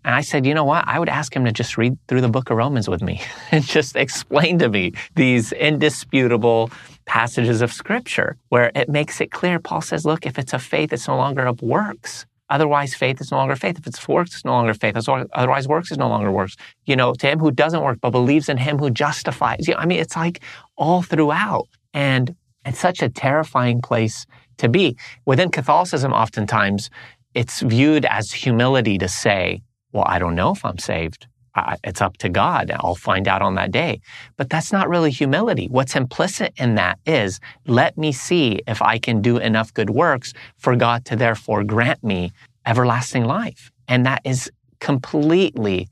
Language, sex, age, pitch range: English, male, 30-49, 110-140 Hz